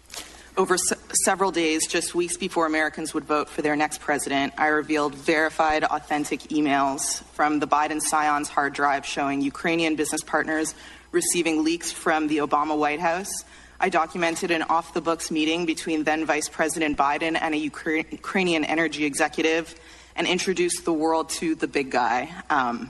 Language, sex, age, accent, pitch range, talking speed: English, female, 20-39, American, 150-170 Hz, 150 wpm